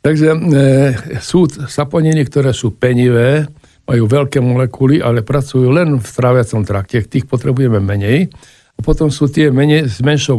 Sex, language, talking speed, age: male, Slovak, 150 wpm, 60-79